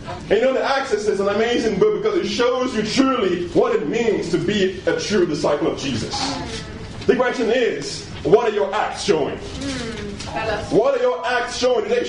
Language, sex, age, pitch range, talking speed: English, male, 30-49, 160-255 Hz, 190 wpm